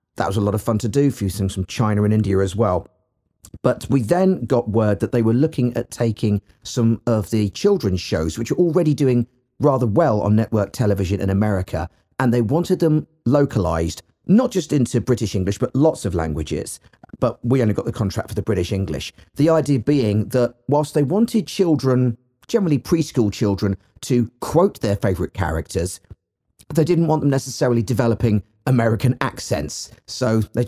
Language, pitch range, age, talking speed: English, 100-130 Hz, 40-59, 185 wpm